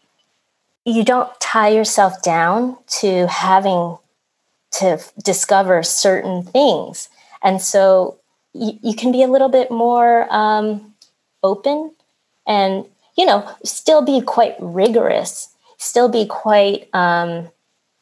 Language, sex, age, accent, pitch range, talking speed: English, female, 20-39, American, 180-240 Hz, 110 wpm